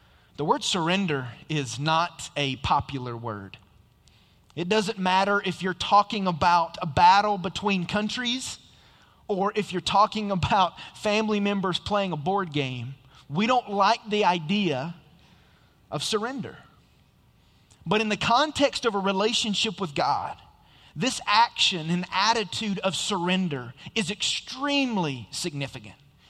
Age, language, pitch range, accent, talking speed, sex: 30-49, English, 155-210 Hz, American, 125 wpm, male